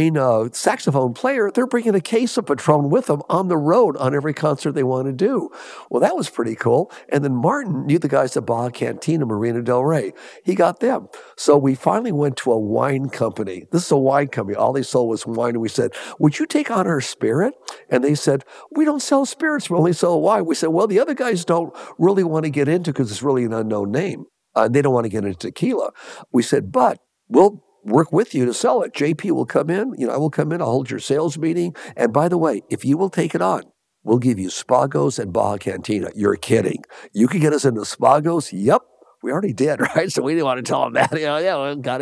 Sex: male